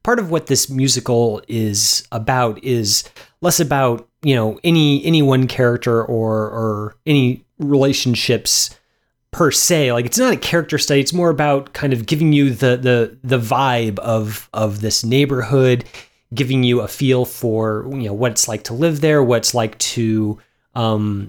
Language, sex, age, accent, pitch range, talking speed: English, male, 30-49, American, 120-150 Hz, 170 wpm